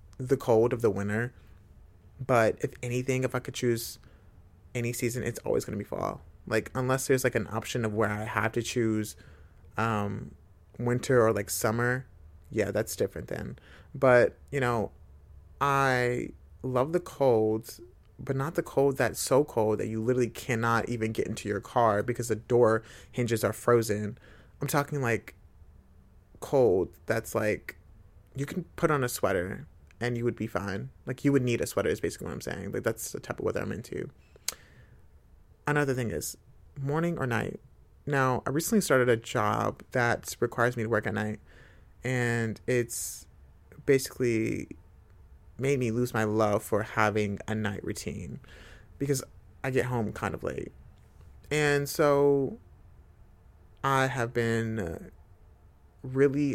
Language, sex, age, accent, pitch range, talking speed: English, male, 30-49, American, 95-125 Hz, 160 wpm